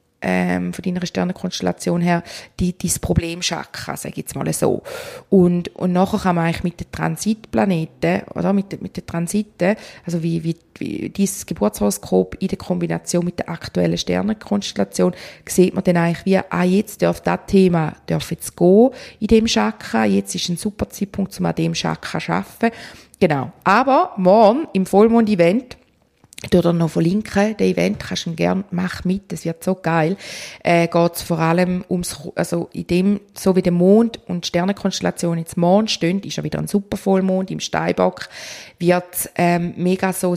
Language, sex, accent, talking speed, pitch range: German, female, Austrian, 175 wpm, 165-195 Hz